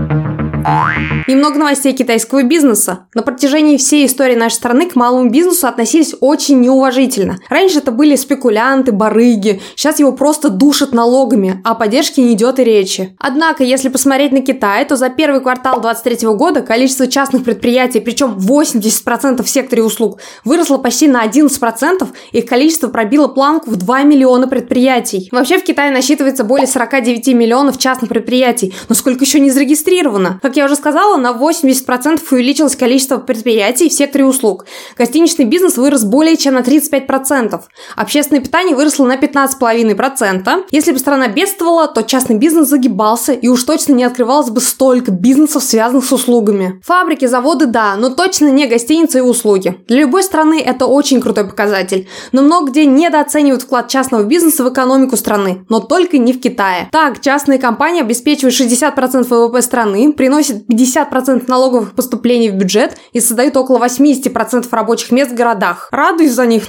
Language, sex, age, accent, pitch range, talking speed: Russian, female, 20-39, native, 235-285 Hz, 160 wpm